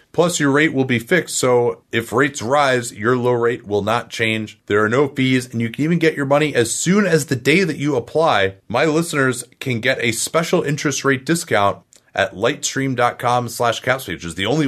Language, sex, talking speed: English, male, 215 wpm